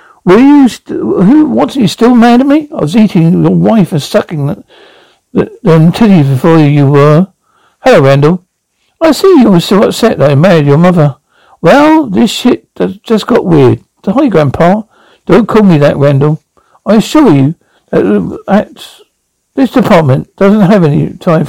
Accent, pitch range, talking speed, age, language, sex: British, 160-230 Hz, 175 wpm, 60-79, English, male